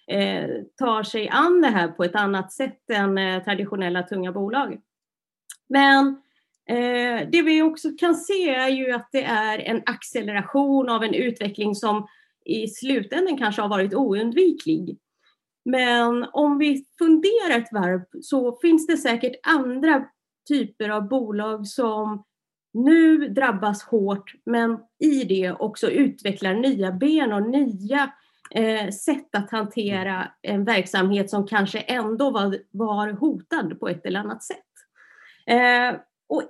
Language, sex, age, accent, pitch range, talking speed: Swedish, female, 30-49, native, 205-275 Hz, 135 wpm